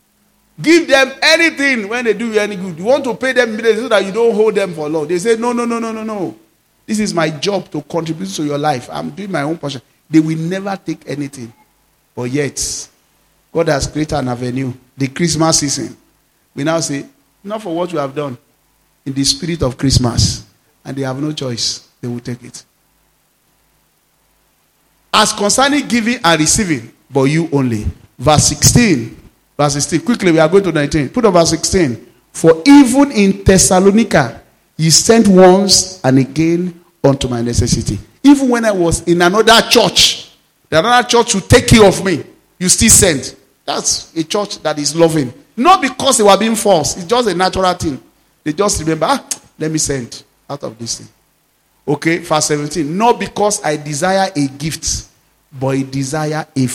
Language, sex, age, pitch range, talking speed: English, male, 40-59, 140-205 Hz, 185 wpm